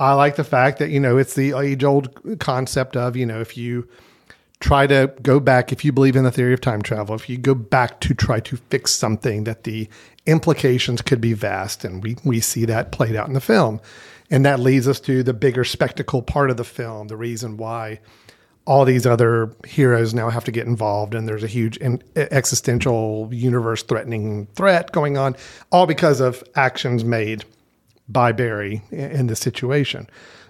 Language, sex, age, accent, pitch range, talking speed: English, male, 40-59, American, 120-145 Hz, 195 wpm